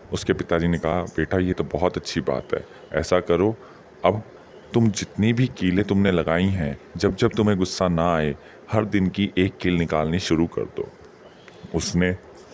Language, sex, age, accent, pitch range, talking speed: Hindi, male, 30-49, native, 80-95 Hz, 175 wpm